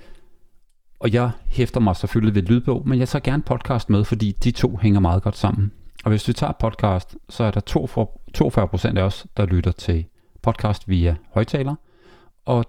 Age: 40-59